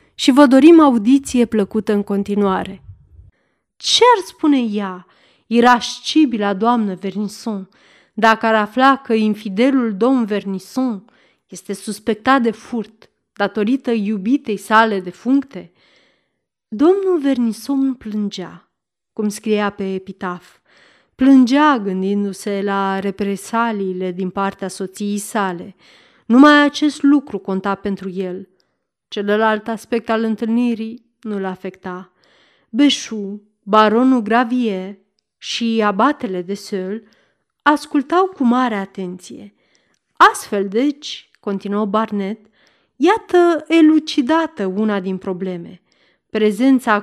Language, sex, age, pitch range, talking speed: Romanian, female, 30-49, 200-260 Hz, 100 wpm